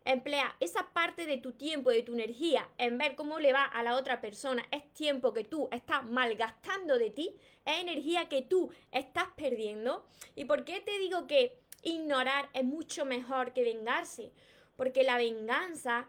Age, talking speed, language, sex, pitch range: 20-39, 175 wpm, Spanish, female, 260-345 Hz